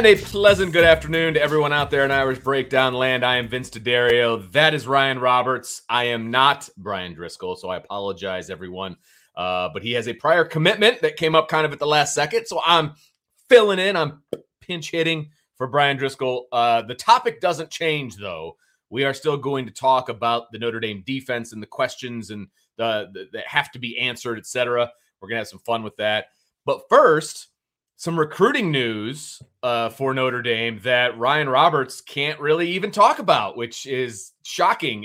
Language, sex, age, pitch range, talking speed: English, male, 30-49, 110-150 Hz, 190 wpm